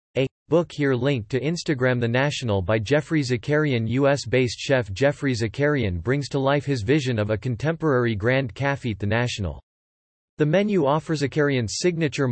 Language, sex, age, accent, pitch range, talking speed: English, male, 40-59, American, 115-150 Hz, 155 wpm